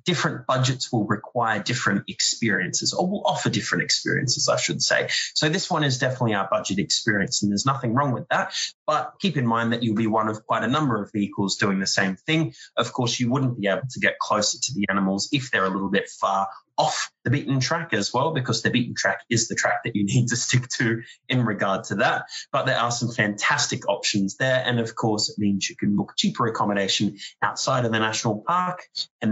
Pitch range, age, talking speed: 105-135 Hz, 20-39, 225 wpm